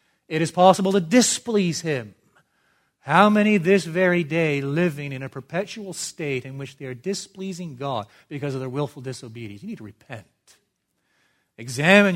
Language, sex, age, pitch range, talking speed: English, male, 40-59, 130-175 Hz, 160 wpm